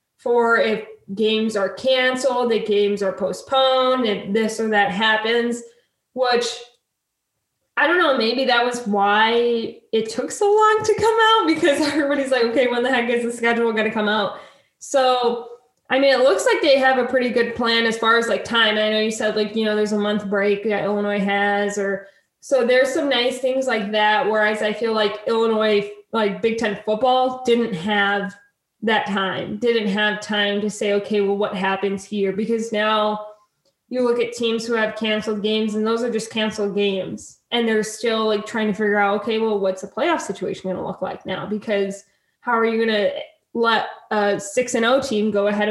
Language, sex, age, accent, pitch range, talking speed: English, female, 20-39, American, 210-245 Hz, 205 wpm